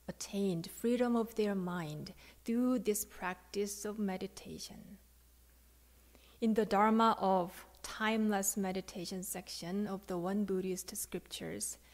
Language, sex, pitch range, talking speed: English, female, 185-225 Hz, 110 wpm